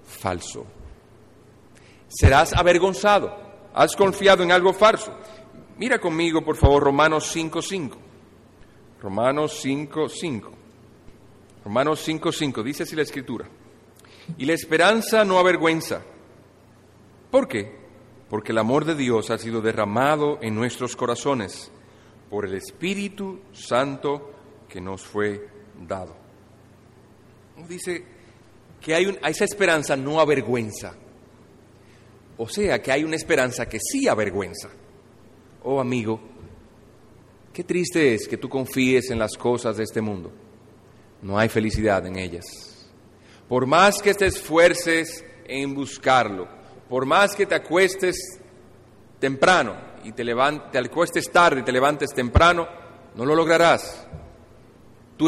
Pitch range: 110-165 Hz